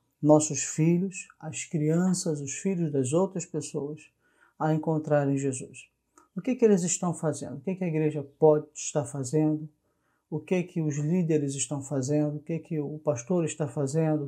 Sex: male